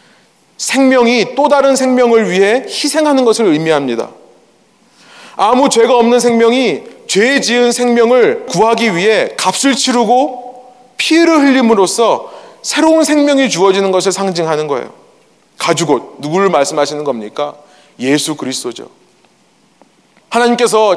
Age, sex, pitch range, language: 30-49, male, 180-250 Hz, Korean